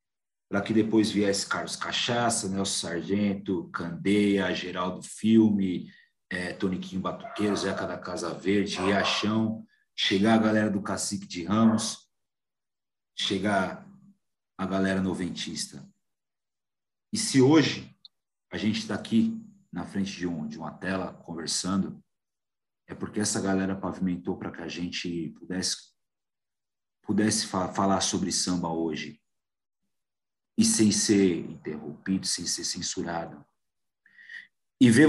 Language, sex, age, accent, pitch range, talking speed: Portuguese, male, 50-69, Brazilian, 95-115 Hz, 115 wpm